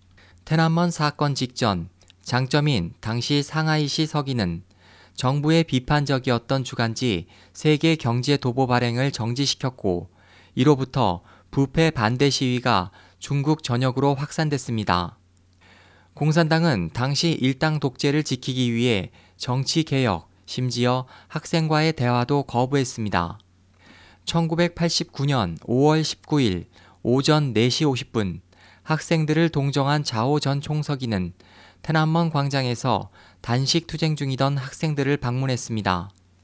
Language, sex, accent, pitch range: Korean, male, native, 95-150 Hz